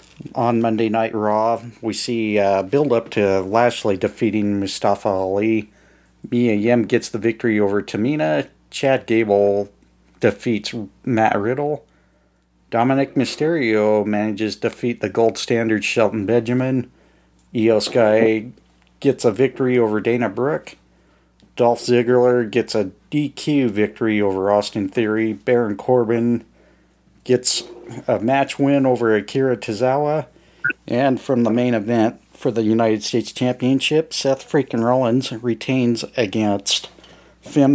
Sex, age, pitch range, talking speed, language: male, 50-69, 105-125 Hz, 120 wpm, English